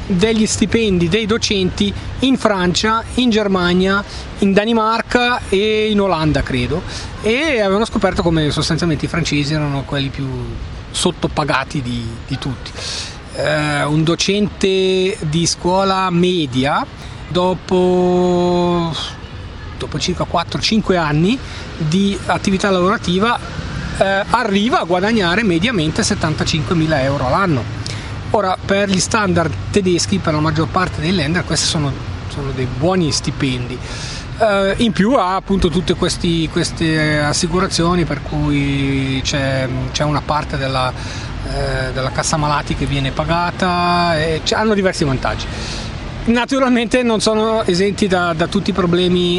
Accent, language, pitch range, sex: native, Italian, 145-195 Hz, male